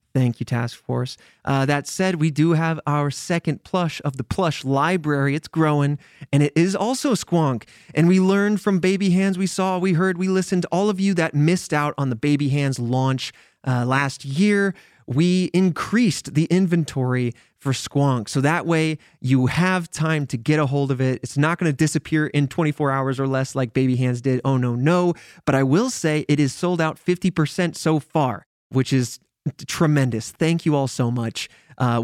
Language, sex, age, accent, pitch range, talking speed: English, male, 30-49, American, 135-175 Hz, 195 wpm